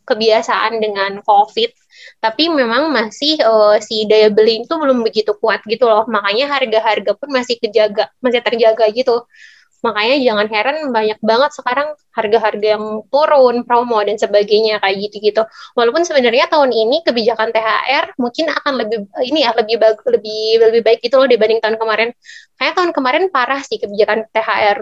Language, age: Indonesian, 20-39